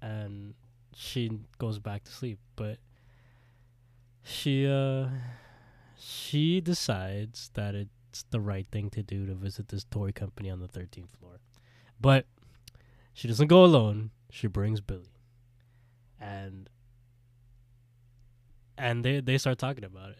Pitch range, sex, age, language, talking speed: 105-120 Hz, male, 20-39, English, 130 wpm